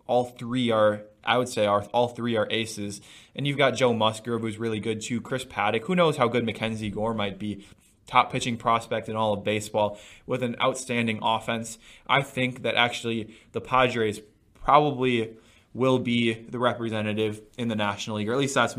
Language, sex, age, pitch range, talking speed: English, male, 20-39, 105-115 Hz, 190 wpm